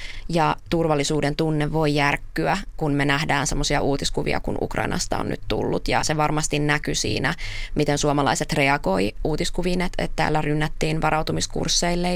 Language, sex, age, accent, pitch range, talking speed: Finnish, female, 20-39, native, 145-185 Hz, 140 wpm